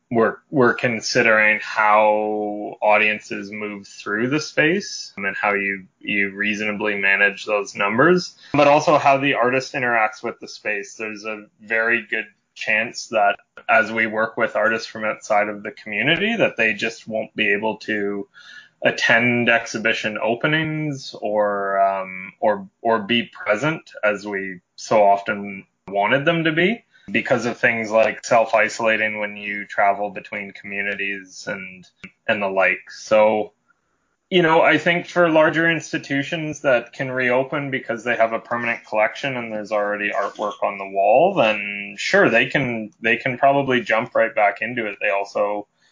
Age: 20-39